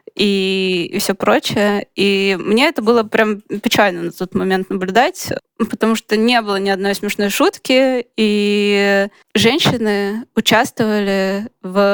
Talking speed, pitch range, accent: 130 wpm, 180-210 Hz, native